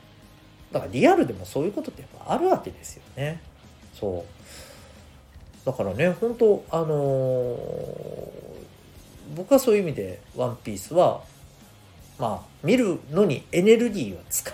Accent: native